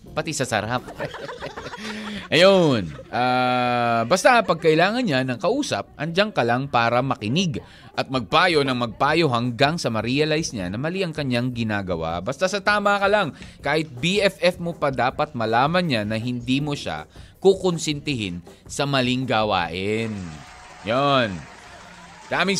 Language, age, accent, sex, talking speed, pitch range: Filipino, 20-39, native, male, 135 wpm, 125-185 Hz